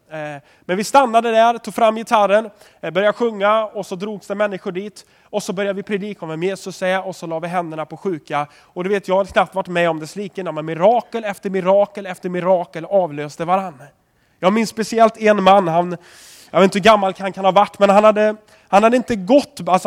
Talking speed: 215 wpm